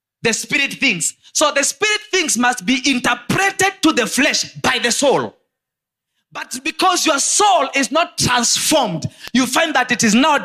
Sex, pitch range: male, 205-315 Hz